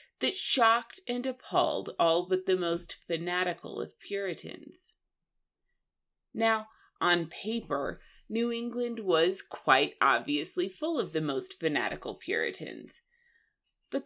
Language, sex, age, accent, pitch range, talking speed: English, female, 30-49, American, 165-250 Hz, 110 wpm